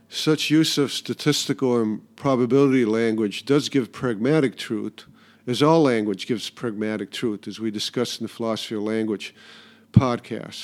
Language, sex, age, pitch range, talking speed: English, male, 50-69, 110-130 Hz, 145 wpm